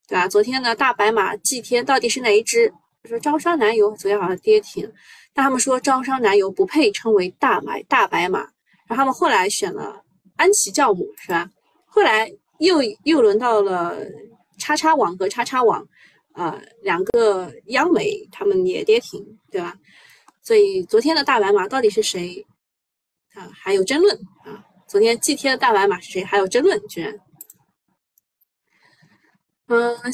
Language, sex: Chinese, female